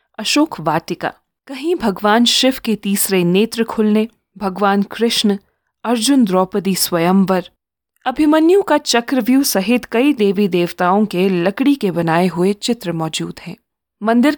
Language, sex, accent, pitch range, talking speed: Hindi, female, native, 185-240 Hz, 125 wpm